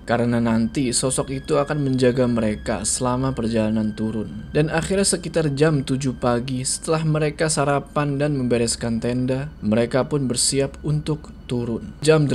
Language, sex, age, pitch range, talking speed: Indonesian, male, 20-39, 115-145 Hz, 135 wpm